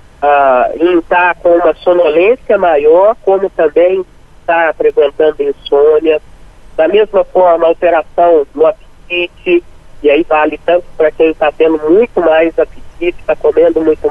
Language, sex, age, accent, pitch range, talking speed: Portuguese, male, 40-59, Brazilian, 160-215 Hz, 130 wpm